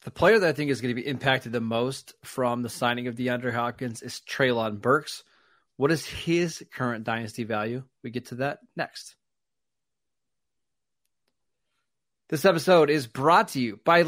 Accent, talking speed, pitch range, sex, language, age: American, 165 wpm, 125-155 Hz, male, English, 30-49